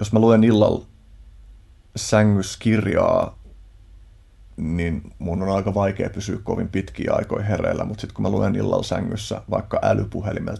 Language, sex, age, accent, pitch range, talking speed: Finnish, male, 30-49, native, 90-105 Hz, 135 wpm